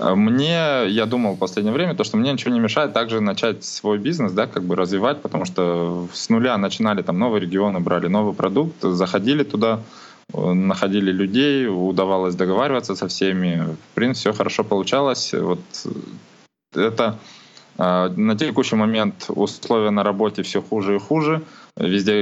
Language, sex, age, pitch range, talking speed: Russian, male, 20-39, 90-110 Hz, 155 wpm